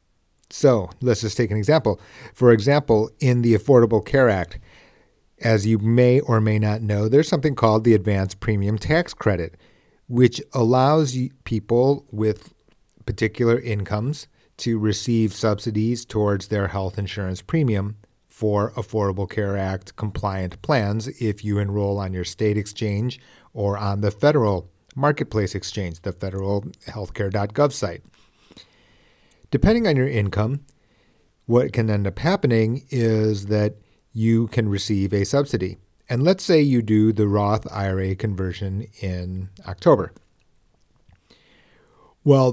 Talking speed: 130 wpm